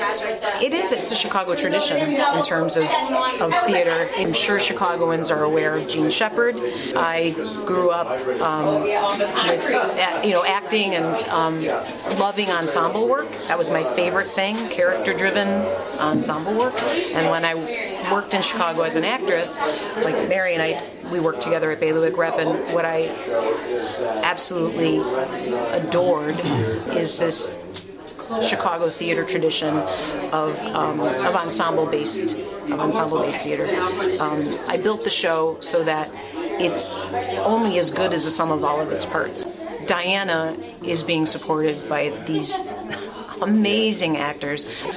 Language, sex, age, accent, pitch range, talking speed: English, female, 30-49, American, 160-215 Hz, 135 wpm